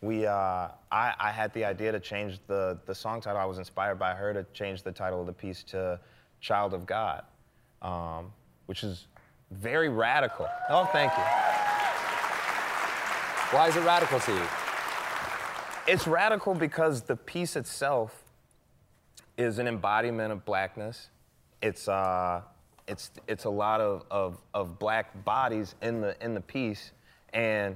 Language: English